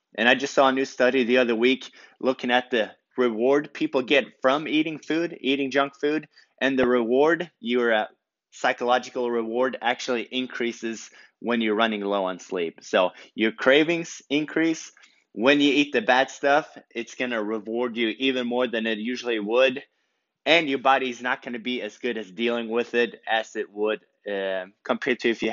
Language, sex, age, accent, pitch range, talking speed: English, male, 20-39, American, 115-140 Hz, 185 wpm